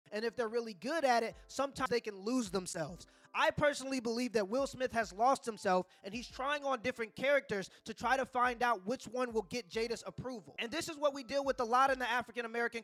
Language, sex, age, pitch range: English, male, 20-39, 230-275 Hz